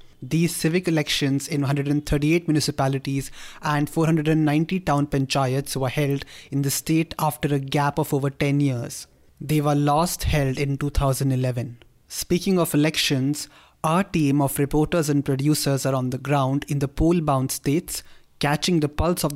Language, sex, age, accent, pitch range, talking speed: English, male, 30-49, Indian, 135-155 Hz, 150 wpm